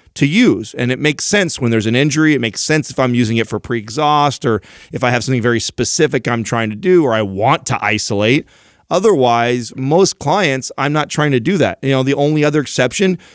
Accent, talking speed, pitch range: American, 225 wpm, 115-140 Hz